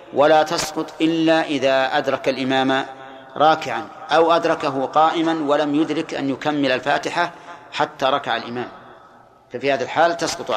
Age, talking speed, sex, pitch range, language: 40-59, 125 wpm, male, 135-155 Hz, Arabic